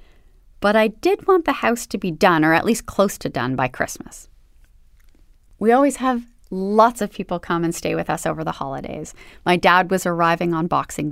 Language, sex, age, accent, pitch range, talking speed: English, female, 30-49, American, 145-200 Hz, 200 wpm